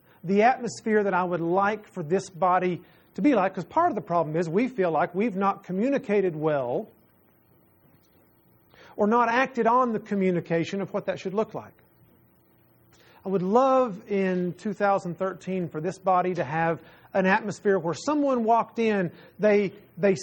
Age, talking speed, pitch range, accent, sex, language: 40-59, 165 wpm, 180-235 Hz, American, male, English